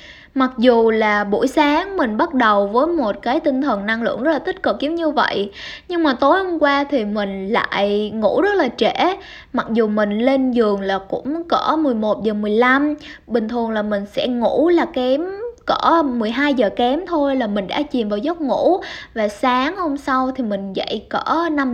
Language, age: Vietnamese, 10-29